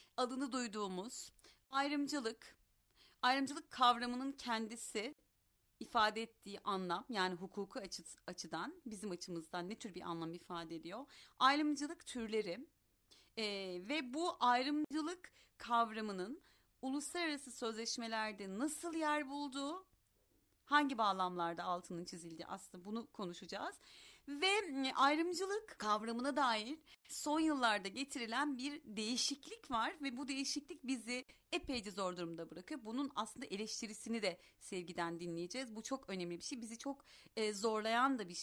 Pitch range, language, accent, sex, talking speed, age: 210-285 Hz, Turkish, native, female, 115 wpm, 40-59